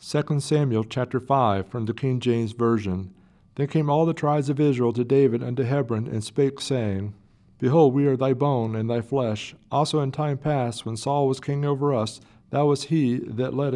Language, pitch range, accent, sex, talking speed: English, 115-140 Hz, American, male, 200 wpm